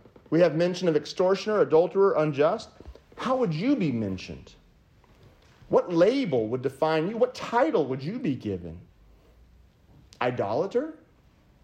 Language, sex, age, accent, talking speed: English, male, 40-59, American, 125 wpm